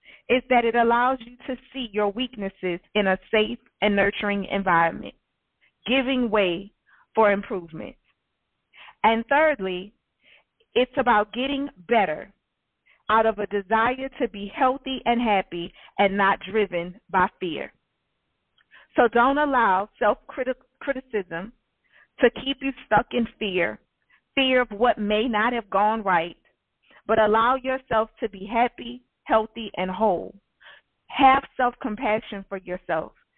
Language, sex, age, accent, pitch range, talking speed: English, female, 40-59, American, 200-250 Hz, 125 wpm